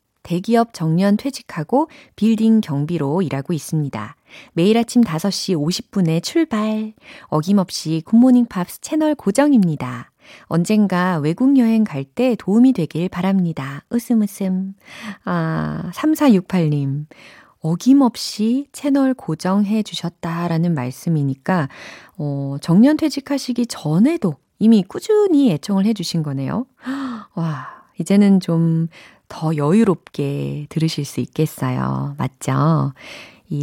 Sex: female